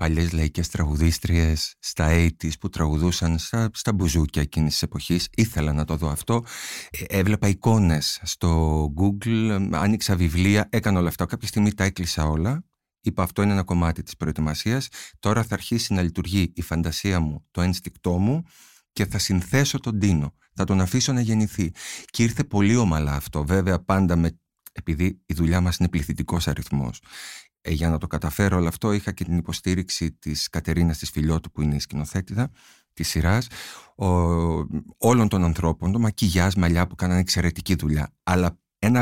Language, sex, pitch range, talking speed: Greek, male, 80-105 Hz, 170 wpm